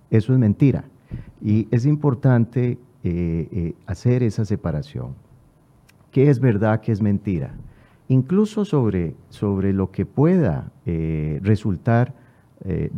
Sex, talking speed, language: male, 120 wpm, Spanish